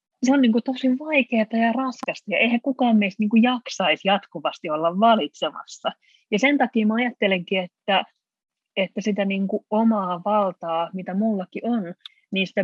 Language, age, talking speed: Finnish, 30-49, 165 wpm